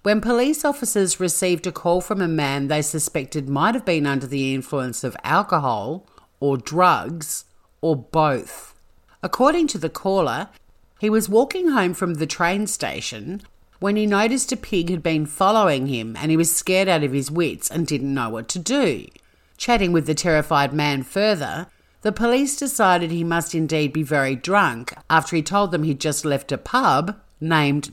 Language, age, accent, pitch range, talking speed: English, 50-69, Australian, 140-190 Hz, 180 wpm